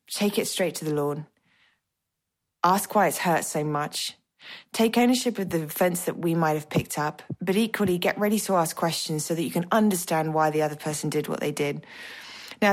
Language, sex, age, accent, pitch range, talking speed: English, female, 20-39, British, 155-195 Hz, 205 wpm